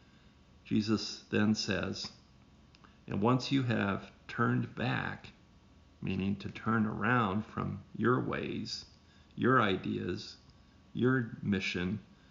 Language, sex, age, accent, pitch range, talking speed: English, male, 50-69, American, 95-120 Hz, 95 wpm